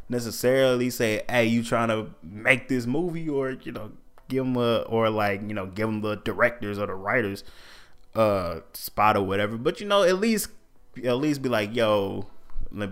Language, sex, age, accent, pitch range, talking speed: English, male, 20-39, American, 105-130 Hz, 190 wpm